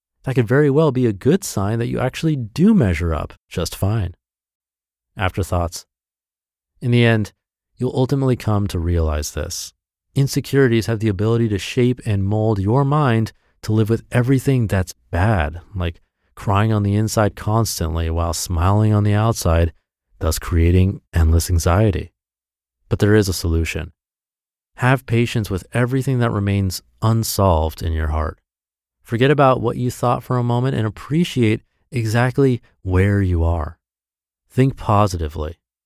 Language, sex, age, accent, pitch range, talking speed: English, male, 30-49, American, 85-120 Hz, 145 wpm